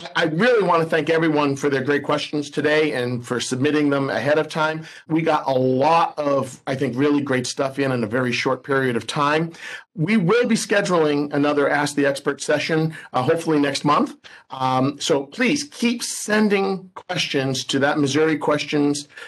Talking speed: 180 wpm